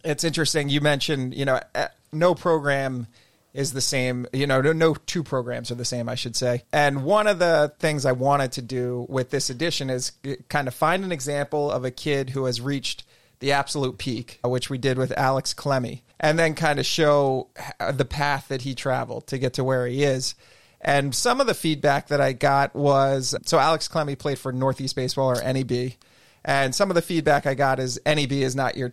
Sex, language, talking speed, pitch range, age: male, English, 210 wpm, 130-145 Hz, 30-49